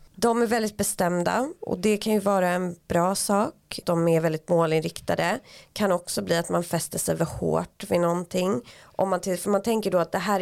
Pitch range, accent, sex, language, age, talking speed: 165-205 Hz, native, female, Swedish, 30-49, 215 wpm